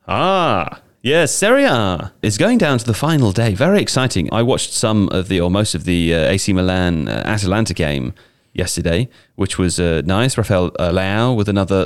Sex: male